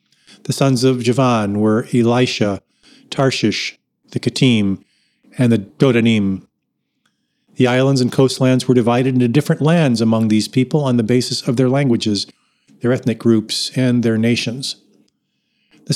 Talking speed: 140 wpm